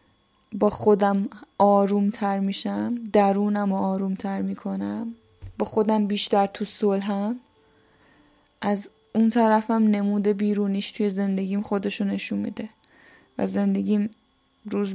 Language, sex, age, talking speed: Persian, female, 10-29, 105 wpm